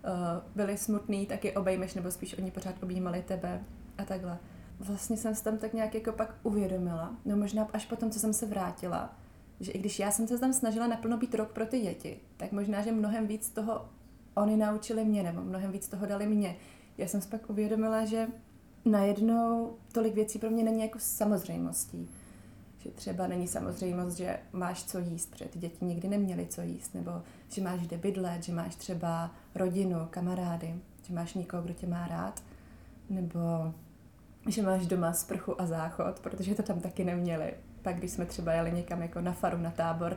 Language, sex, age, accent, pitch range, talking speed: Czech, female, 20-39, native, 175-210 Hz, 195 wpm